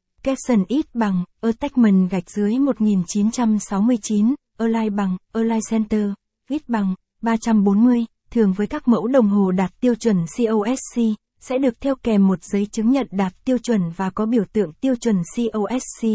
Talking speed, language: 155 wpm, Vietnamese